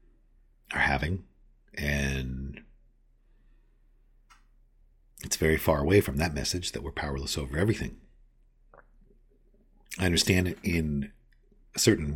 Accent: American